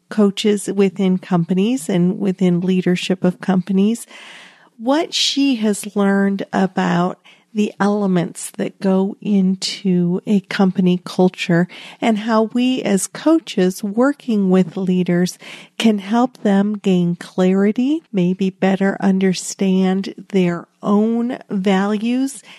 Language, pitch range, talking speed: English, 185-220 Hz, 105 wpm